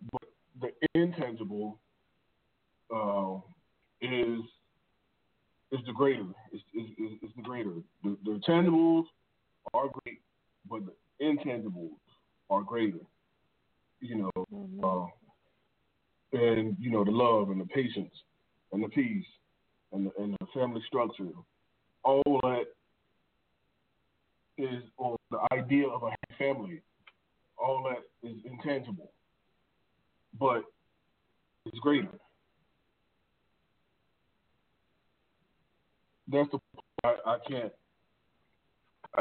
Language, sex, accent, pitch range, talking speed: English, male, American, 110-140 Hz, 95 wpm